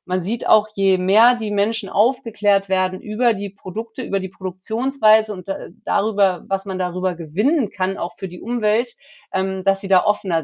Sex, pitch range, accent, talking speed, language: female, 190-220 Hz, German, 170 wpm, German